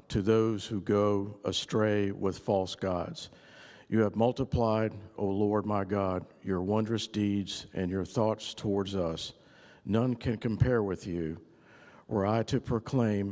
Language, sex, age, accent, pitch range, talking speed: English, male, 50-69, American, 95-110 Hz, 145 wpm